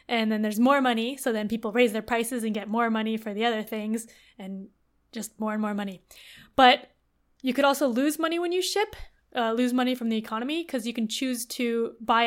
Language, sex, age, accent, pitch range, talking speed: English, female, 10-29, American, 220-250 Hz, 225 wpm